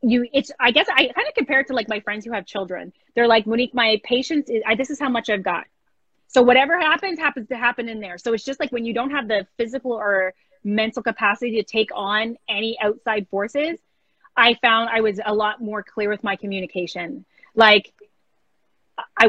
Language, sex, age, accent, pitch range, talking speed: English, female, 20-39, American, 205-270 Hz, 215 wpm